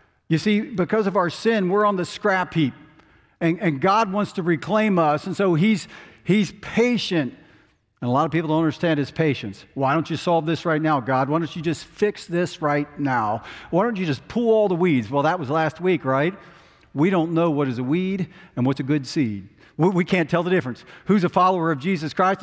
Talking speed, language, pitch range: 225 wpm, English, 145-185 Hz